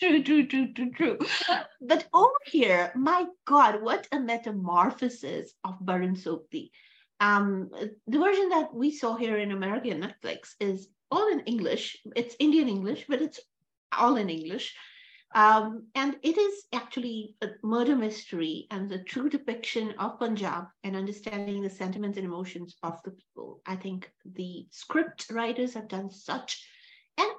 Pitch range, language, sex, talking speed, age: 190-265 Hz, English, female, 150 wpm, 50-69